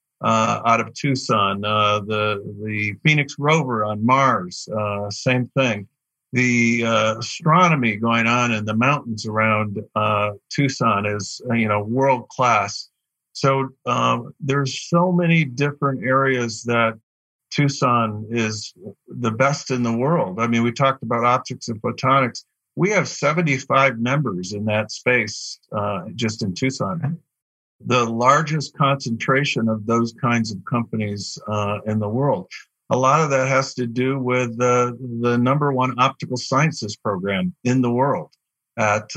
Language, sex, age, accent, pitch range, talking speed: English, male, 50-69, American, 115-140 Hz, 145 wpm